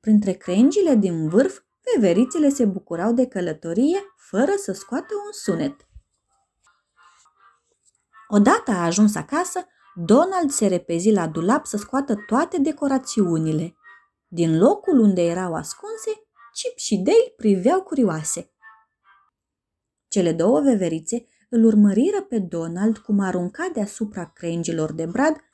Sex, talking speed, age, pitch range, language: female, 115 wpm, 30-49, 185-305 Hz, Romanian